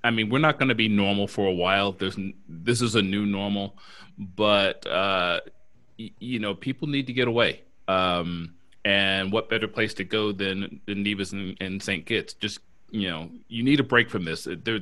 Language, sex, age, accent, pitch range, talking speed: English, male, 30-49, American, 95-115 Hz, 205 wpm